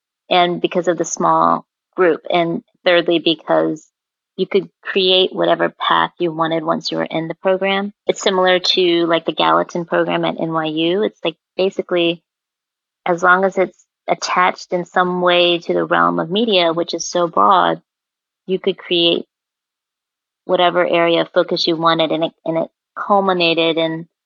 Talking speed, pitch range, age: 165 wpm, 160-180 Hz, 30-49